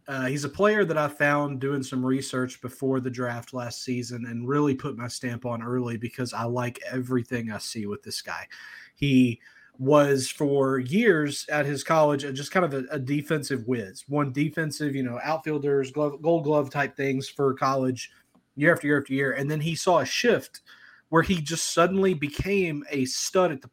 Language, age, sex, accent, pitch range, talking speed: English, 30-49, male, American, 130-155 Hz, 195 wpm